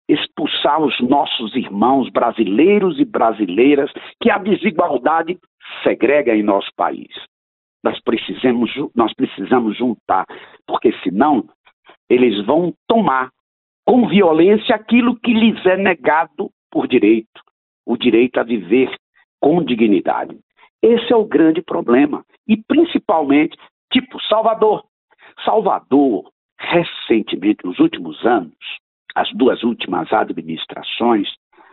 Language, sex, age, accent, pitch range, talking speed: Portuguese, male, 60-79, Brazilian, 150-245 Hz, 105 wpm